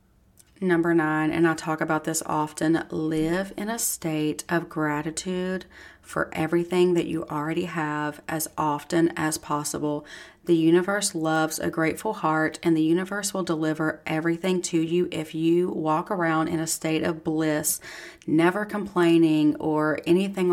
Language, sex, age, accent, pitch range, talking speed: English, female, 30-49, American, 160-175 Hz, 150 wpm